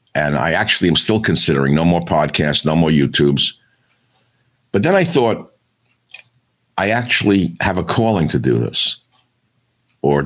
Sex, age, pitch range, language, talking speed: male, 60-79, 75-110 Hz, English, 145 wpm